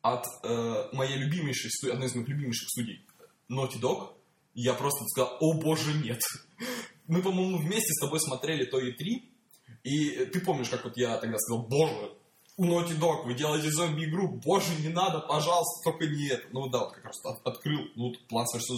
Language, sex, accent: Russian, male, native